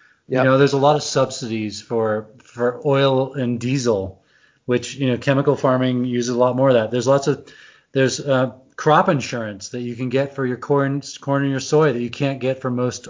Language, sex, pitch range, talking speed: English, male, 120-145 Hz, 215 wpm